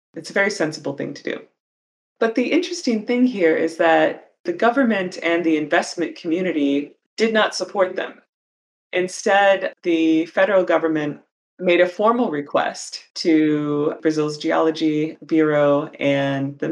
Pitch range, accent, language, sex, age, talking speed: 145-185 Hz, American, English, female, 30-49, 135 wpm